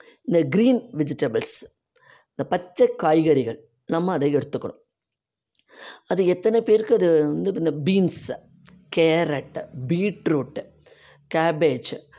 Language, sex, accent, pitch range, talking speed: Tamil, female, native, 165-225 Hz, 95 wpm